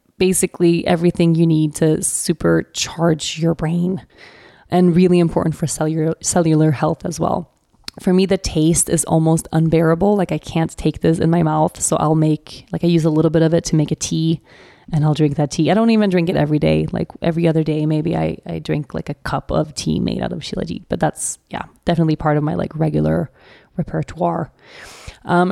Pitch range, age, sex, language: 155-180 Hz, 20-39, female, English